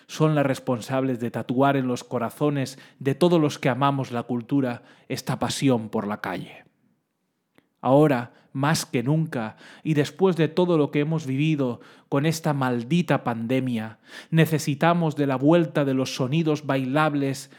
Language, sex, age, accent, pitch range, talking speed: Spanish, male, 30-49, Spanish, 125-155 Hz, 150 wpm